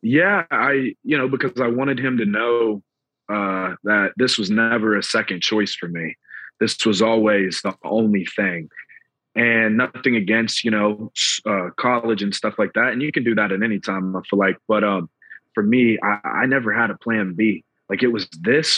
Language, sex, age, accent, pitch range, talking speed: English, male, 30-49, American, 105-120 Hz, 200 wpm